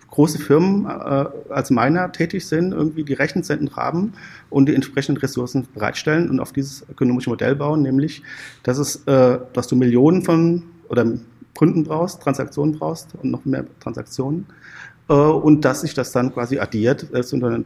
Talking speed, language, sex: 170 wpm, German, male